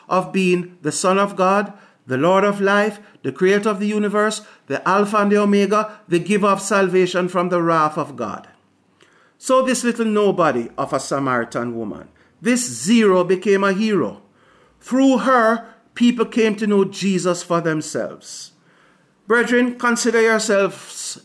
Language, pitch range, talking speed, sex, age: English, 160-200 Hz, 155 wpm, male, 50-69